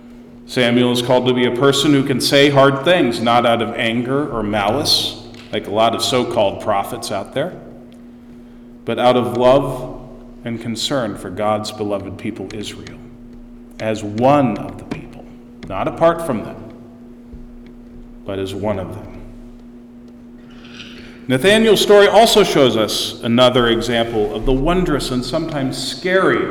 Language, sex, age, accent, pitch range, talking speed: English, male, 40-59, American, 115-145 Hz, 145 wpm